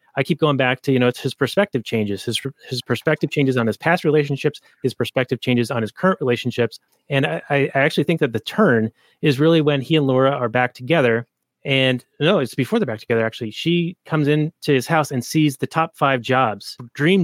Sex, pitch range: male, 120-150 Hz